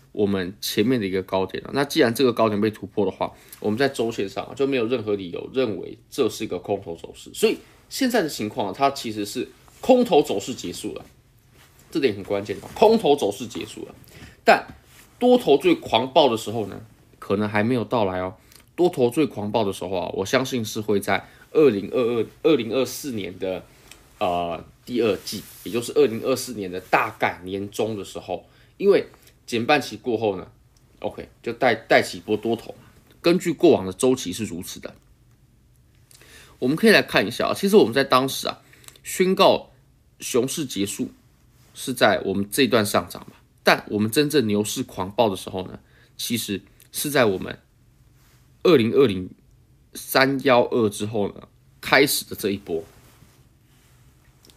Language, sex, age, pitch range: Chinese, male, 20-39, 100-130 Hz